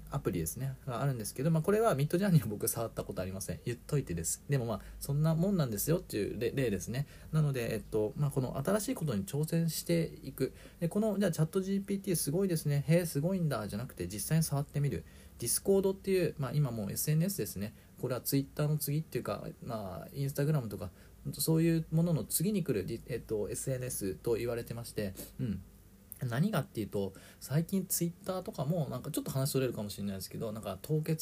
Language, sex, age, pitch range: Japanese, male, 40-59, 115-165 Hz